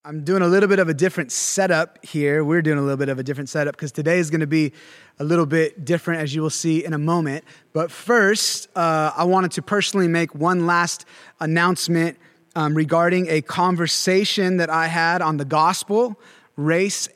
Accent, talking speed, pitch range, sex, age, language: American, 205 wpm, 150-175 Hz, male, 20-39, English